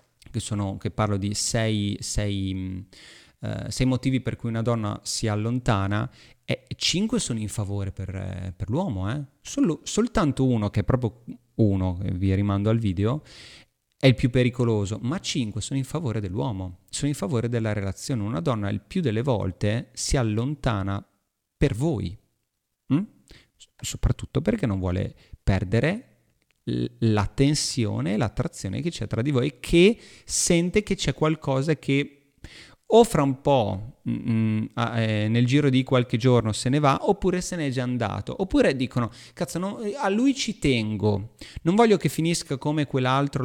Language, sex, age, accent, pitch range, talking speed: Italian, male, 30-49, native, 105-140 Hz, 155 wpm